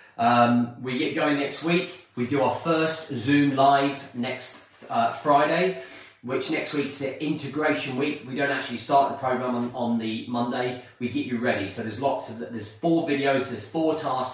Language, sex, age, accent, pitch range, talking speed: English, male, 30-49, British, 115-140 Hz, 185 wpm